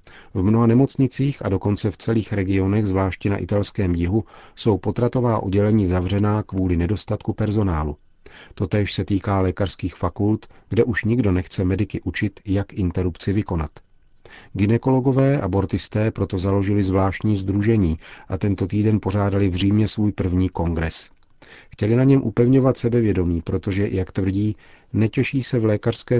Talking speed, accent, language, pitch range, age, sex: 140 wpm, native, Czech, 95-110 Hz, 40-59, male